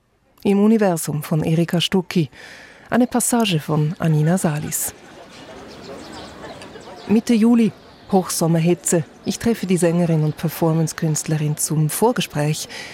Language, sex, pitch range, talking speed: German, female, 155-195 Hz, 95 wpm